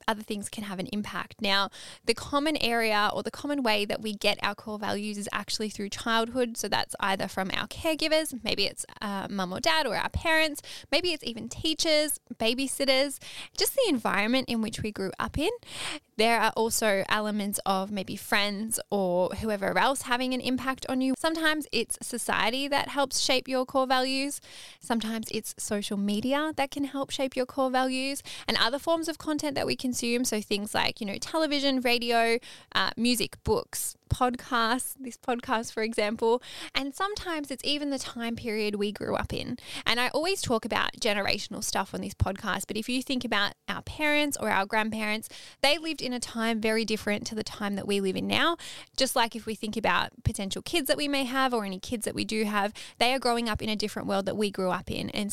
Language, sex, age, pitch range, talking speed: English, female, 10-29, 210-270 Hz, 205 wpm